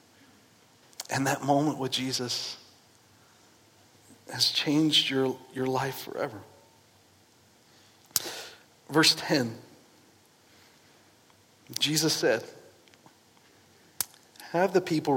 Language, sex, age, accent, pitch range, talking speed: English, male, 40-59, American, 125-150 Hz, 70 wpm